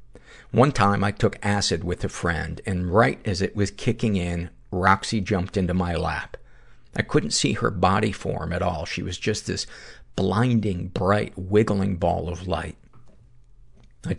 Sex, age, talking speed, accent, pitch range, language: male, 50-69, 165 wpm, American, 85-105 Hz, English